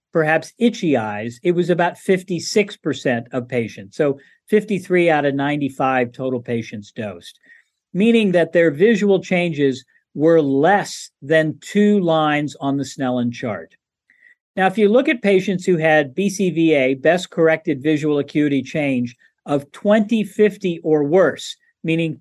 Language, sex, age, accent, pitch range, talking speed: English, male, 50-69, American, 145-190 Hz, 140 wpm